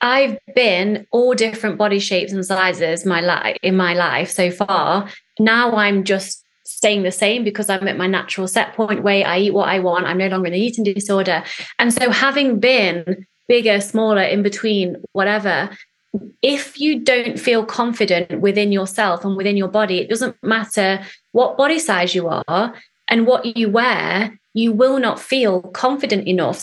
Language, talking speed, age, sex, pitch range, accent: English, 180 wpm, 20-39, female, 190-235 Hz, British